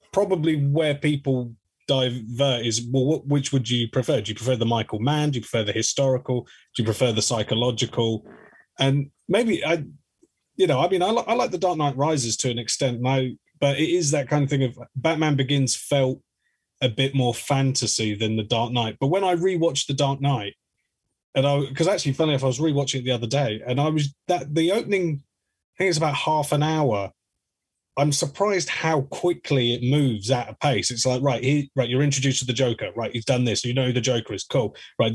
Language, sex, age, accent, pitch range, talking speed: English, male, 30-49, British, 120-145 Hz, 220 wpm